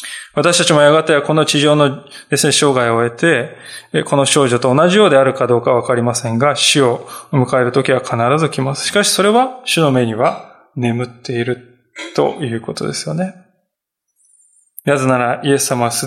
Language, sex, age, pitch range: Japanese, male, 20-39, 125-175 Hz